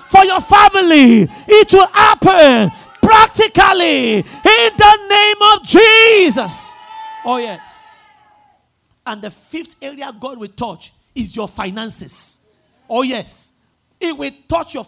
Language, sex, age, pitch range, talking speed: English, male, 40-59, 220-345 Hz, 120 wpm